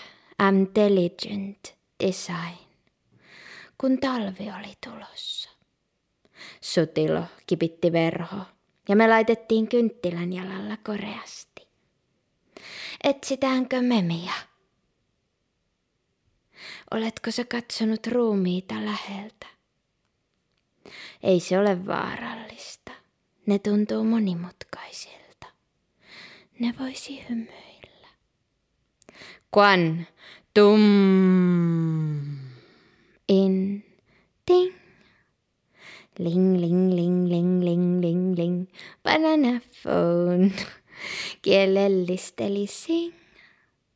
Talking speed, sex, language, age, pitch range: 60 wpm, female, Finnish, 20-39, 175-220 Hz